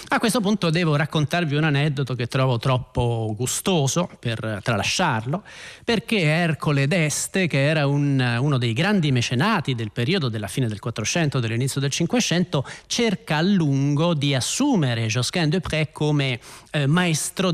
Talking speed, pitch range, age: 145 wpm, 130-180 Hz, 30-49